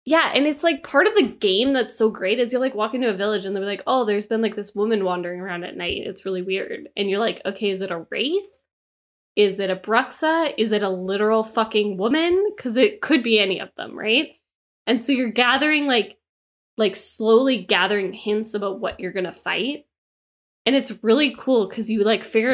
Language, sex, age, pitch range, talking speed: English, female, 10-29, 195-250 Hz, 220 wpm